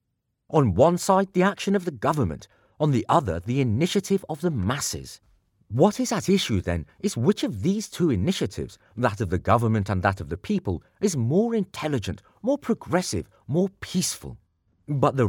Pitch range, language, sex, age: 115-180 Hz, English, male, 40-59